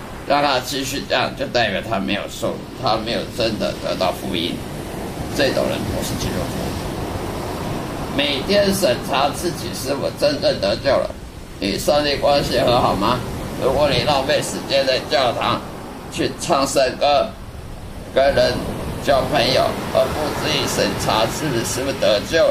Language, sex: Chinese, male